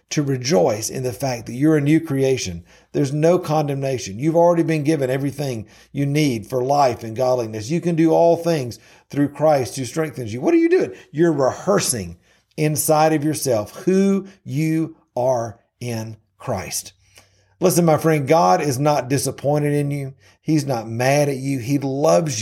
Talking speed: 170 wpm